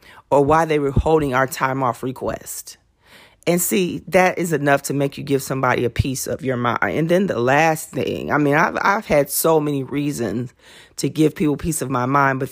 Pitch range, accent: 130-155 Hz, American